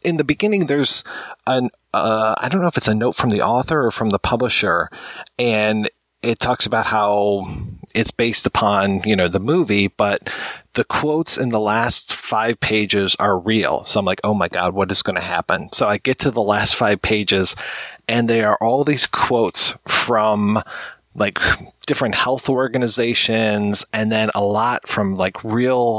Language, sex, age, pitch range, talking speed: English, male, 30-49, 100-120 Hz, 180 wpm